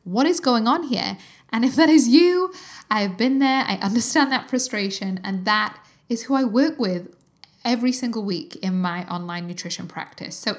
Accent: British